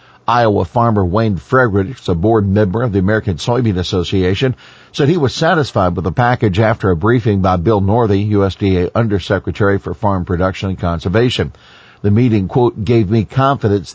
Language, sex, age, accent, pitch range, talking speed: English, male, 50-69, American, 95-120 Hz, 165 wpm